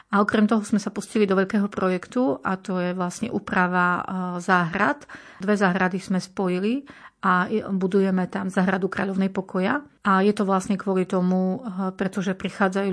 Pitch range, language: 180-200 Hz, Slovak